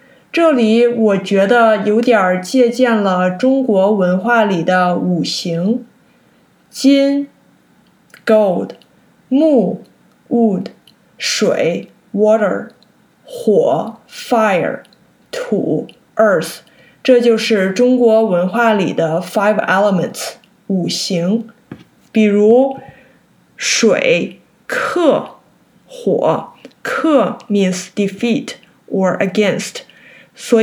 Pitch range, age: 190-250 Hz, 20-39